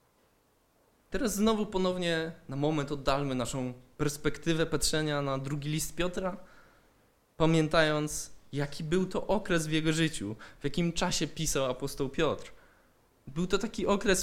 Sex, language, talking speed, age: male, Polish, 130 wpm, 20-39